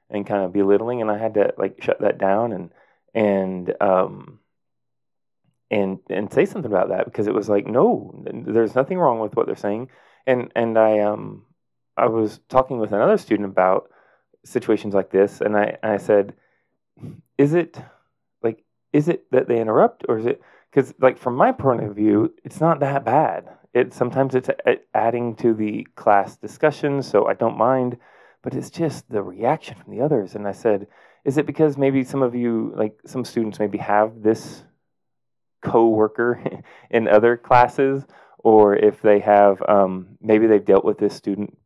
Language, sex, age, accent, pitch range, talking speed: English, male, 30-49, American, 105-125 Hz, 185 wpm